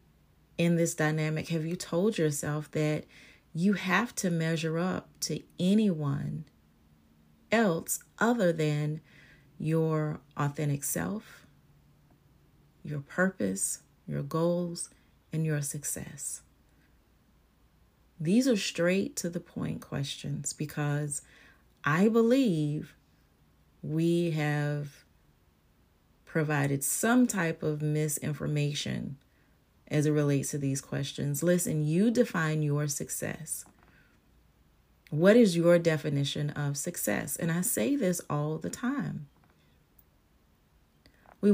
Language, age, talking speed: English, 30-49, 100 wpm